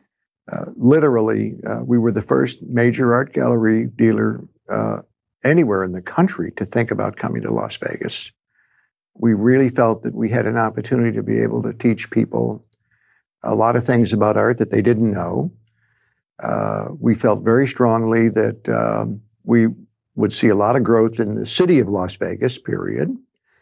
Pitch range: 110-125 Hz